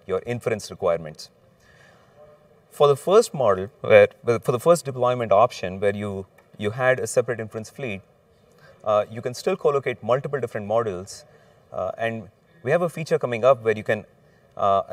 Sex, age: male, 30-49